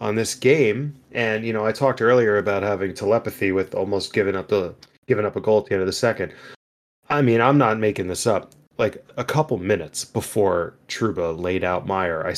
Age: 30-49